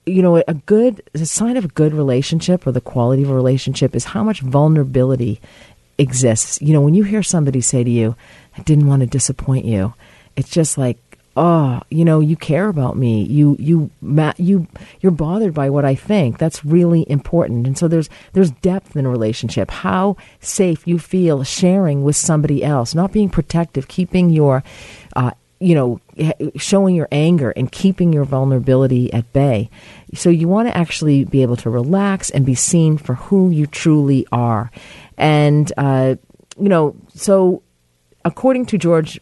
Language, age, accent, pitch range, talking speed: English, 40-59, American, 135-180 Hz, 180 wpm